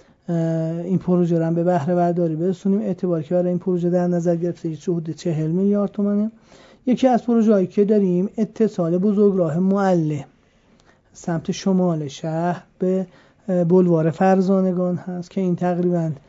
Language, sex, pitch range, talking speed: Persian, male, 165-185 Hz, 135 wpm